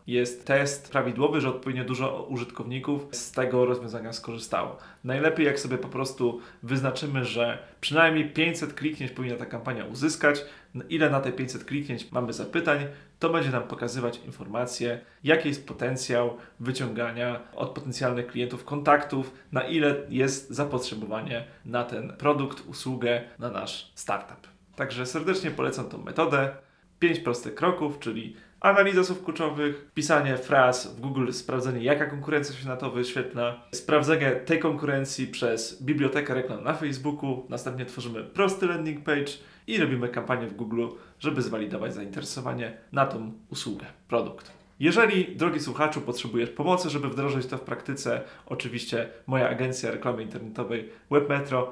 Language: Polish